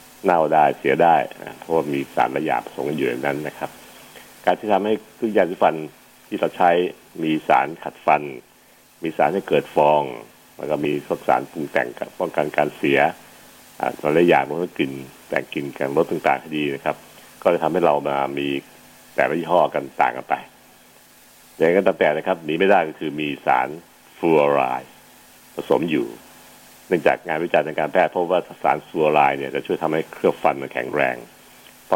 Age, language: 60-79, Thai